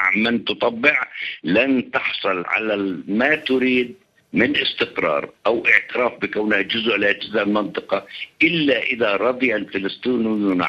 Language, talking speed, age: Arabic, 120 wpm, 60-79